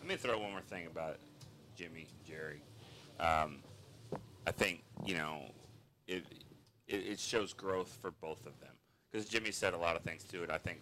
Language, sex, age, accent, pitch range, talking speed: English, male, 30-49, American, 85-105 Hz, 195 wpm